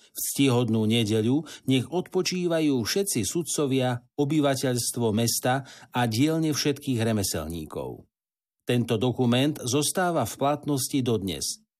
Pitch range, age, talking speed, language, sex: 115-145 Hz, 50-69, 95 wpm, Slovak, male